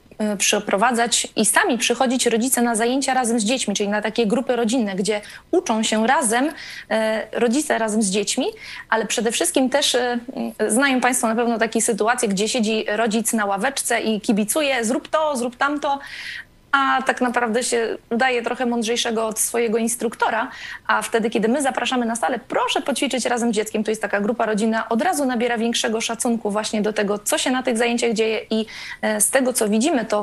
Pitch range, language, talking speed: 220-255 Hz, Polish, 180 wpm